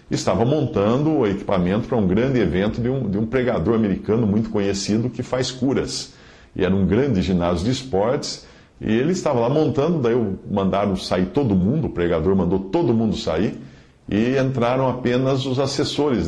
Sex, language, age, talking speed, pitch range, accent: male, English, 50-69, 175 wpm, 95-135 Hz, Brazilian